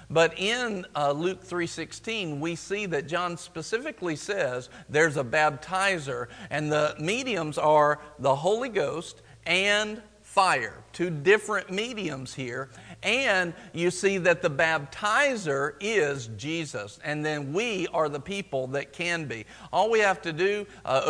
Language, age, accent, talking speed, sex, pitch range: English, 50-69, American, 140 wpm, male, 150-200 Hz